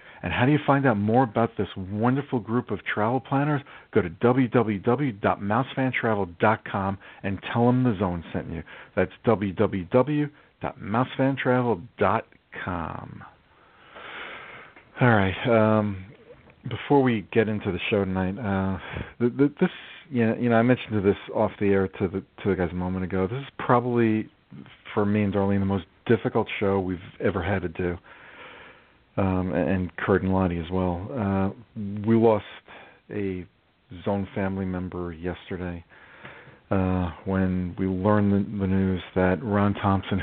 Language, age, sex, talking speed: English, 40-59, male, 145 wpm